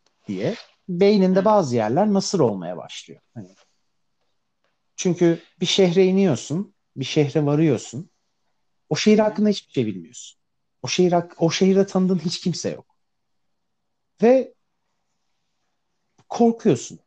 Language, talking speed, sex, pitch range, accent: Turkish, 115 wpm, male, 120-200 Hz, native